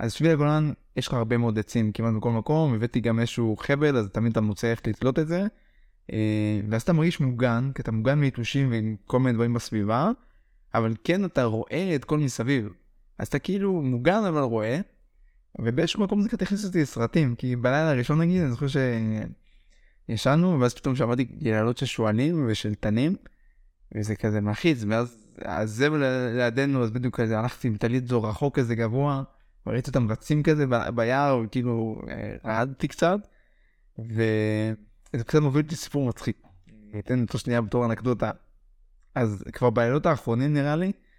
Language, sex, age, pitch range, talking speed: Hebrew, male, 20-39, 110-145 Hz, 155 wpm